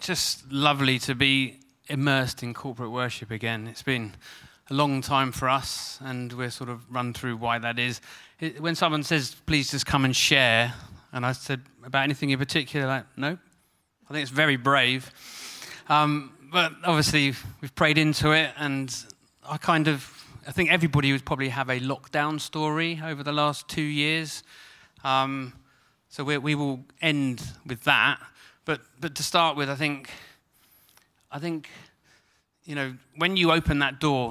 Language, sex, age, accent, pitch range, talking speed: English, male, 30-49, British, 125-150 Hz, 170 wpm